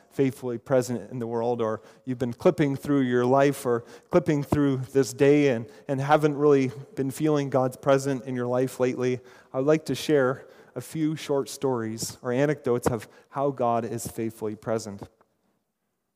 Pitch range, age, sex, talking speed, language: 120-165 Hz, 30-49, male, 165 wpm, English